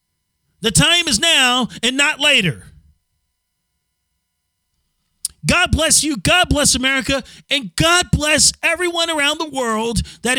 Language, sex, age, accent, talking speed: English, male, 40-59, American, 120 wpm